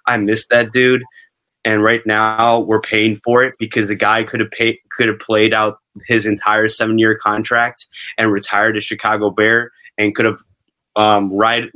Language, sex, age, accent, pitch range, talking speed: English, male, 20-39, American, 105-115 Hz, 180 wpm